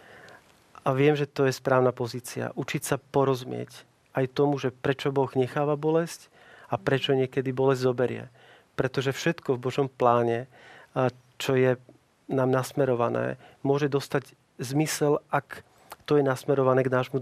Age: 40-59